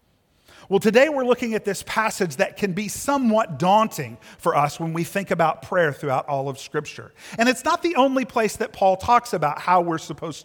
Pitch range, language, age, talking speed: 150-225 Hz, English, 50-69, 205 wpm